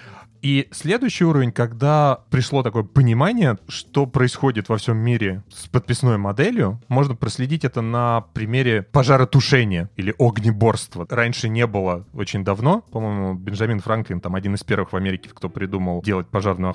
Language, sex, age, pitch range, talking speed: Russian, male, 30-49, 100-130 Hz, 145 wpm